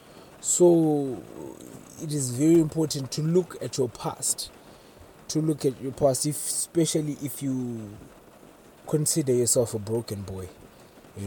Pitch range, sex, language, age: 110-140 Hz, male, English, 20-39